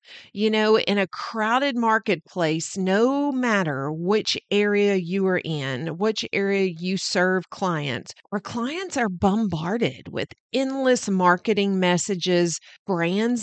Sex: female